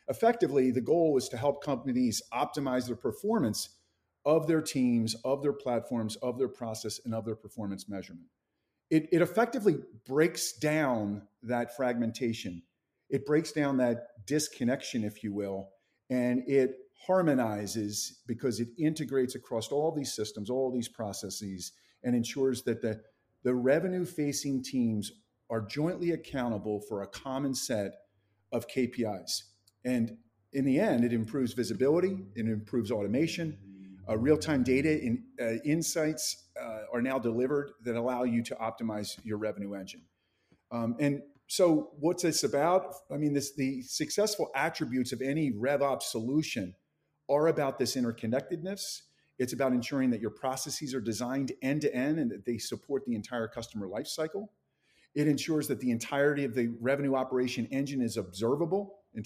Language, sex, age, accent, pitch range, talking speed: English, male, 40-59, American, 115-150 Hz, 145 wpm